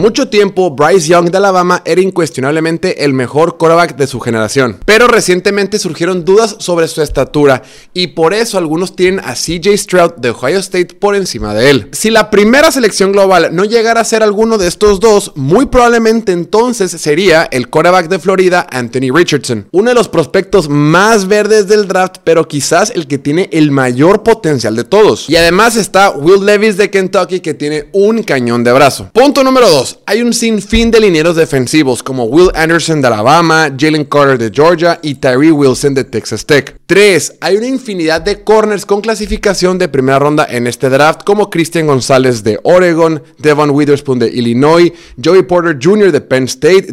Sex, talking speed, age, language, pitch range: male, 185 wpm, 30-49, Spanish, 145-200 Hz